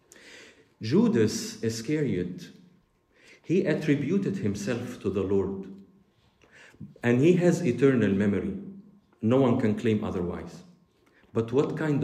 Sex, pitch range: male, 100-155 Hz